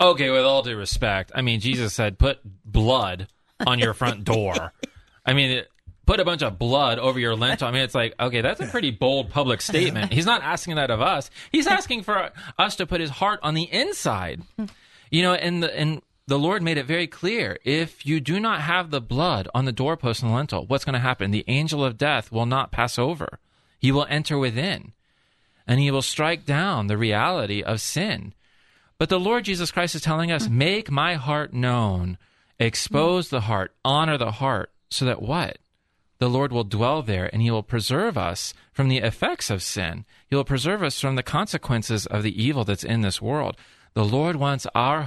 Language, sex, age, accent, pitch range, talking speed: English, male, 30-49, American, 110-150 Hz, 210 wpm